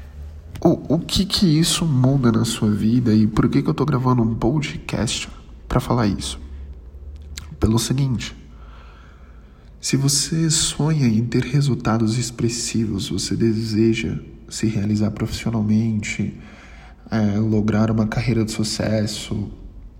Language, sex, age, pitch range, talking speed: Portuguese, male, 10-29, 105-125 Hz, 120 wpm